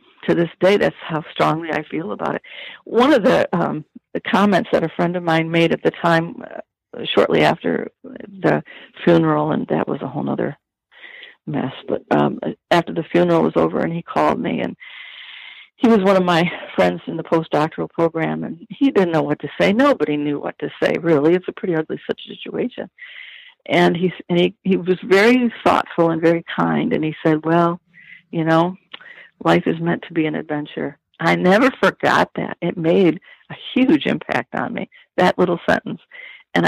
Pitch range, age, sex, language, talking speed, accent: 155-205 Hz, 60-79, female, English, 190 wpm, American